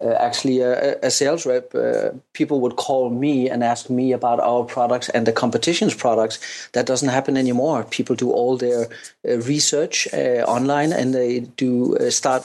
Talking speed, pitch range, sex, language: 185 wpm, 125-150 Hz, male, English